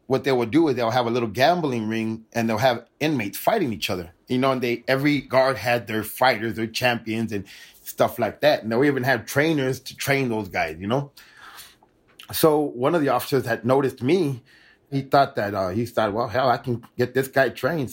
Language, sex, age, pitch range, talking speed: English, male, 20-39, 115-135 Hz, 220 wpm